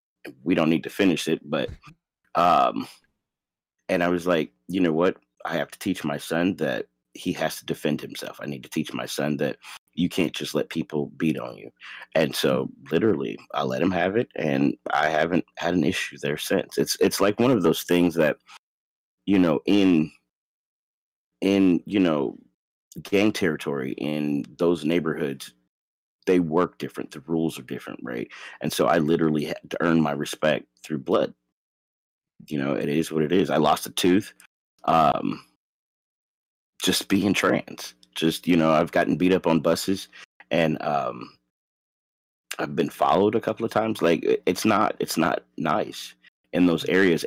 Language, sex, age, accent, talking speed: English, male, 30-49, American, 175 wpm